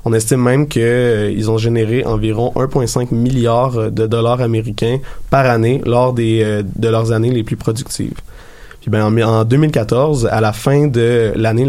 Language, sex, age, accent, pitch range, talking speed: French, male, 20-39, Canadian, 110-125 Hz, 165 wpm